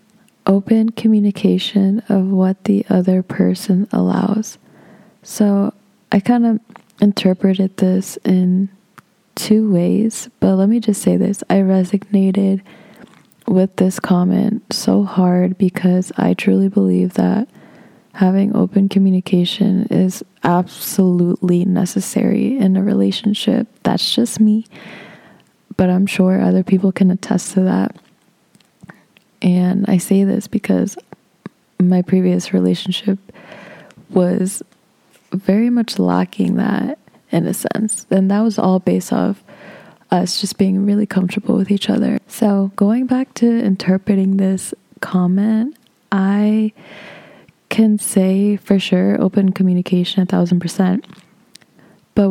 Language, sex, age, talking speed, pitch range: English, female, 20-39, 120 wpm, 185-210 Hz